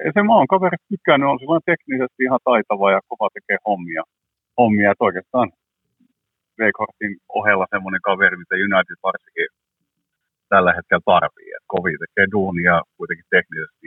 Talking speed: 145 wpm